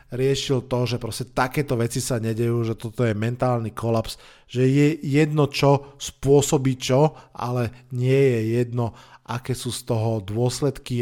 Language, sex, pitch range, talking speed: Slovak, male, 120-145 Hz, 145 wpm